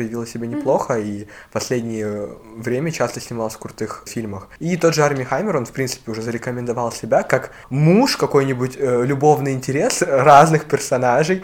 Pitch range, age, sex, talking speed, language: 115-140 Hz, 20-39, male, 155 wpm, Russian